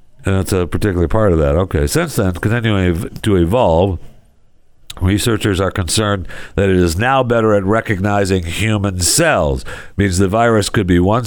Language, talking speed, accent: English, 170 wpm, American